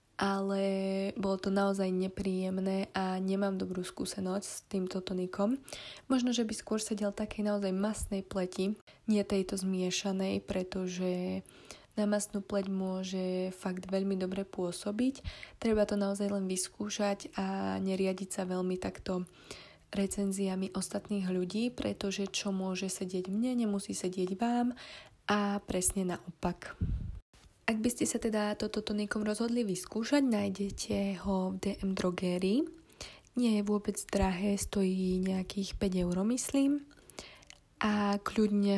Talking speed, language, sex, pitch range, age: 125 wpm, Slovak, female, 185-205 Hz, 20-39